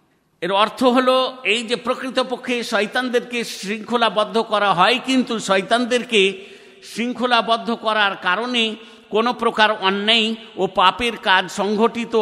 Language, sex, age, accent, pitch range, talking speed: Bengali, male, 50-69, native, 180-230 Hz, 110 wpm